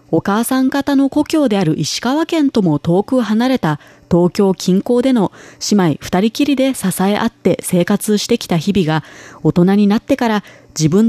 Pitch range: 155-230 Hz